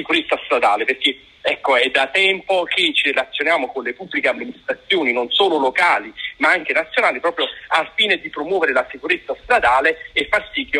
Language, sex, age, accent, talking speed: Italian, male, 40-59, native, 170 wpm